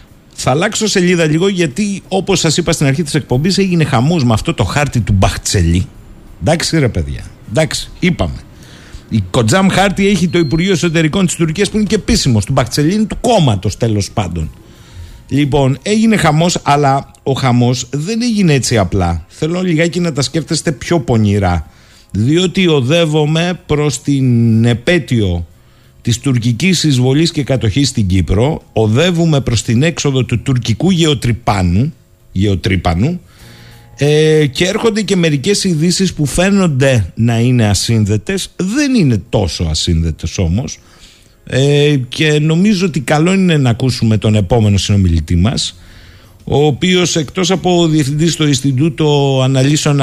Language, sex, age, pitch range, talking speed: Greek, male, 50-69, 110-165 Hz, 140 wpm